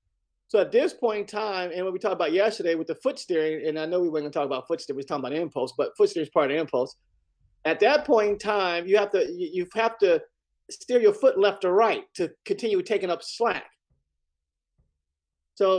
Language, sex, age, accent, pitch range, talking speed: English, male, 40-59, American, 165-225 Hz, 240 wpm